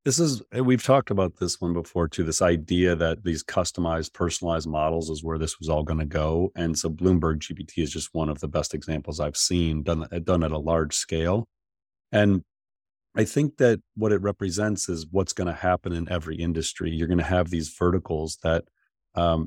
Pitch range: 80-95 Hz